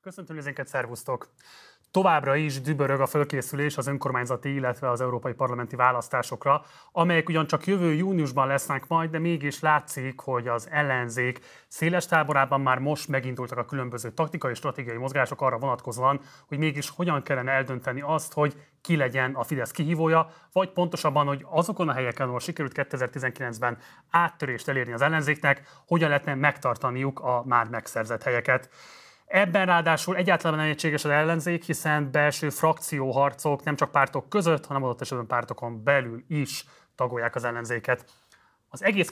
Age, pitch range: 30-49, 125-155 Hz